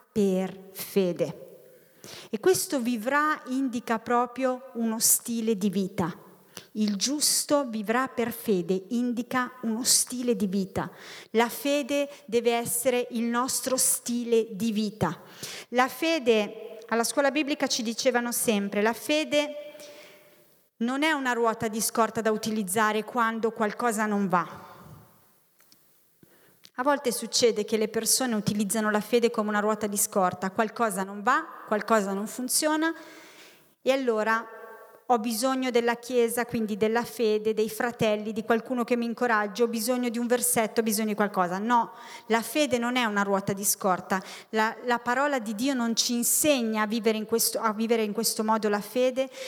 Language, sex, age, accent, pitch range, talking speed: Italian, female, 30-49, native, 215-250 Hz, 150 wpm